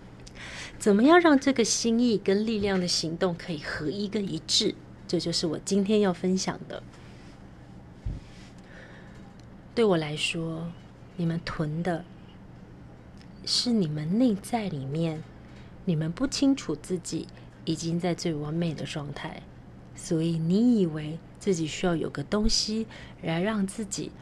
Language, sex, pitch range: Chinese, female, 160-210 Hz